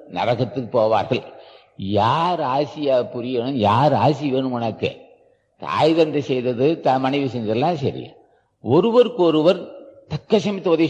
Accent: Indian